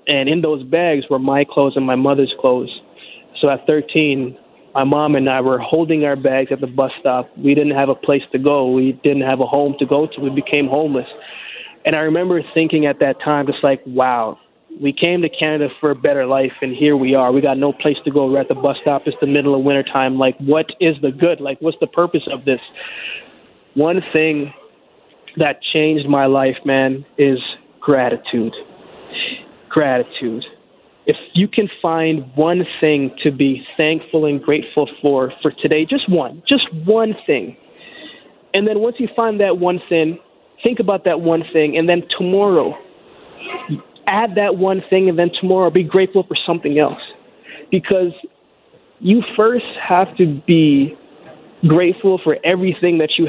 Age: 20-39